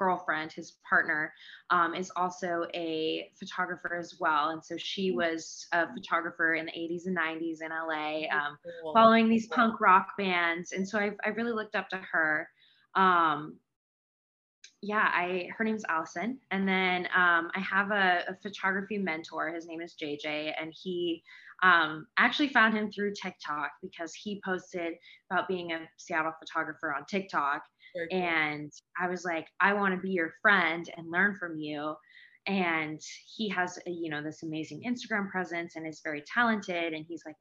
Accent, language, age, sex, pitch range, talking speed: American, English, 20-39, female, 160-195 Hz, 170 wpm